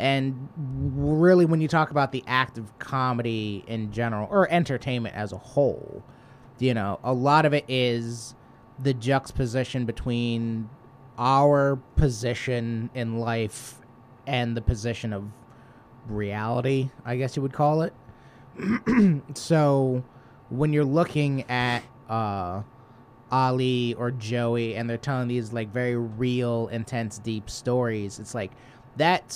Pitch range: 115-130 Hz